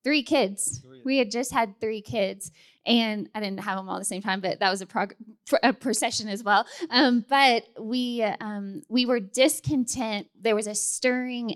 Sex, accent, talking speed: female, American, 195 wpm